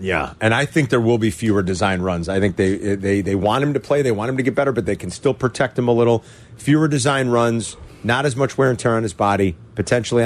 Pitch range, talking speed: 100-145 Hz, 270 wpm